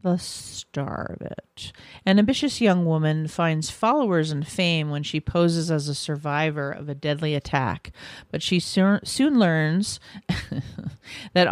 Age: 40-59